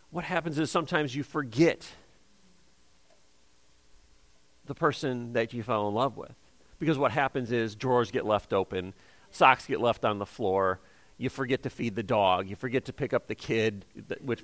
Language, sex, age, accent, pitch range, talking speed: English, male, 40-59, American, 120-160 Hz, 175 wpm